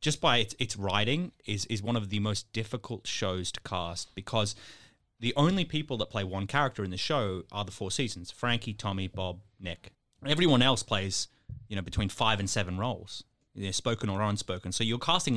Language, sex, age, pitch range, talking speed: English, male, 30-49, 100-130 Hz, 205 wpm